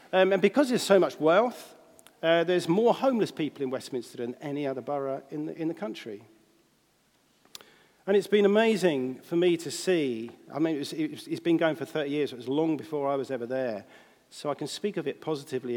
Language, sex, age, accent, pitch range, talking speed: English, male, 50-69, British, 125-170 Hz, 200 wpm